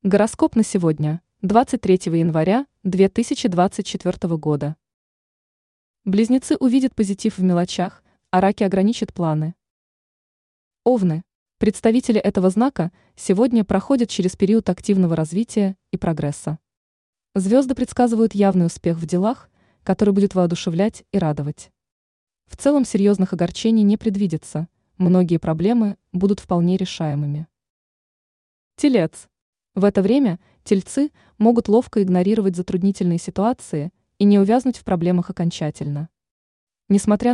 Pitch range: 175-220 Hz